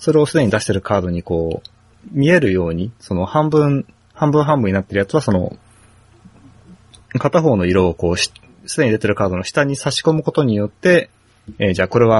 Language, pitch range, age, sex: Japanese, 95-120 Hz, 20-39, male